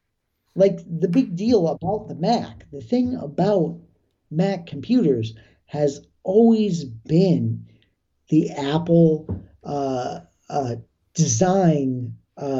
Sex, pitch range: male, 130-165 Hz